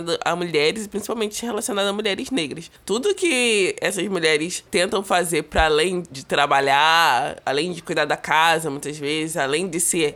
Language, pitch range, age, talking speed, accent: Portuguese, 155-190 Hz, 20-39, 160 wpm, Brazilian